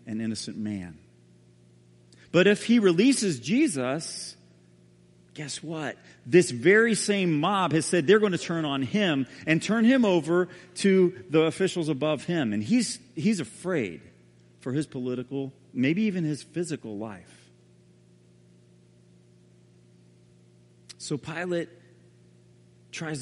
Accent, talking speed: American, 120 wpm